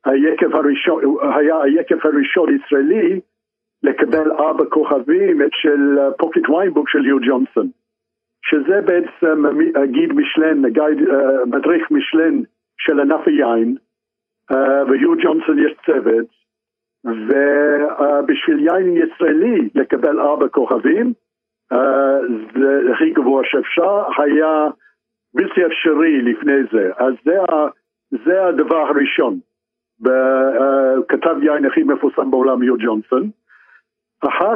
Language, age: Hebrew, 60-79